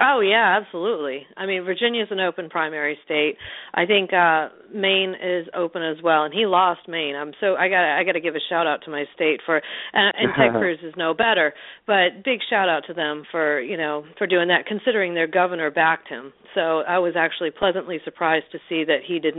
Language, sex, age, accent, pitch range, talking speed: English, female, 40-59, American, 160-205 Hz, 225 wpm